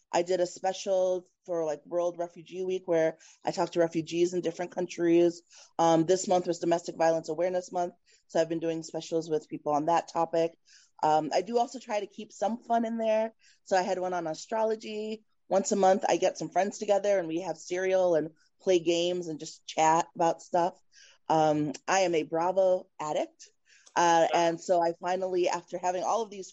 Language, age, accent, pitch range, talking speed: English, 20-39, American, 165-195 Hz, 200 wpm